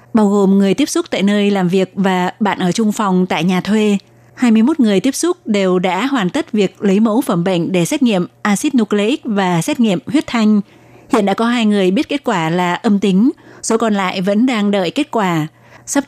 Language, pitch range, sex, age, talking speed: Vietnamese, 185-225 Hz, female, 20-39, 225 wpm